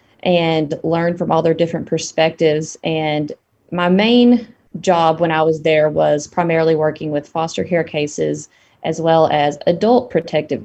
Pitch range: 155-180 Hz